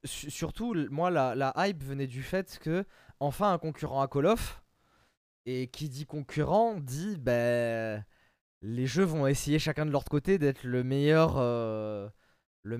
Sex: male